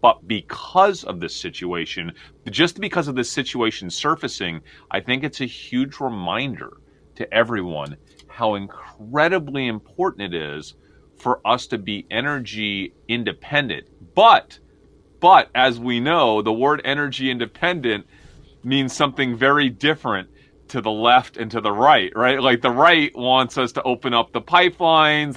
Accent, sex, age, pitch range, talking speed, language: American, male, 30-49, 120-165 Hz, 145 wpm, English